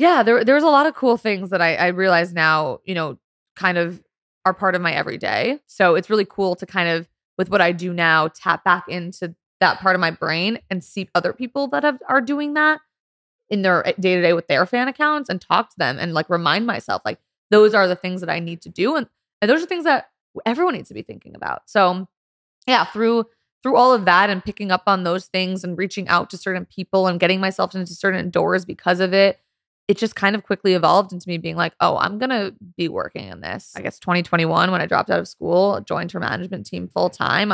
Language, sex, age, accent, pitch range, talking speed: English, female, 20-39, American, 180-245 Hz, 245 wpm